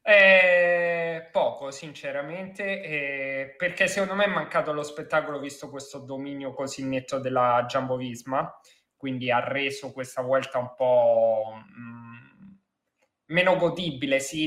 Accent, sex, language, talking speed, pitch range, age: native, male, Italian, 125 wpm, 125-150 Hz, 20-39